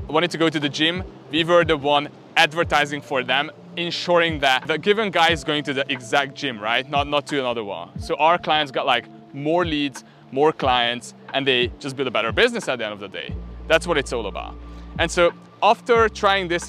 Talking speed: 225 wpm